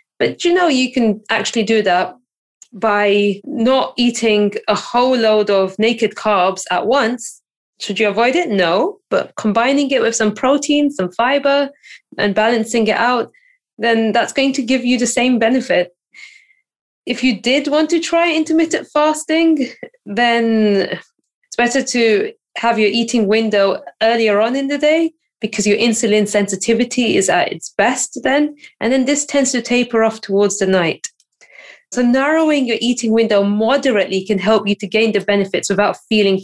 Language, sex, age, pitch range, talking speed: English, female, 20-39, 200-265 Hz, 165 wpm